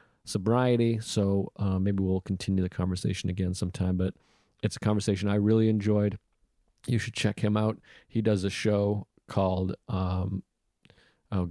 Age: 40-59